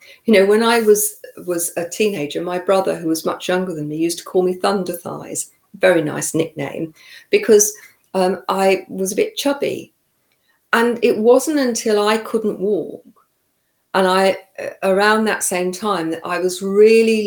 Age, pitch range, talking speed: 50-69, 160-200 Hz, 170 wpm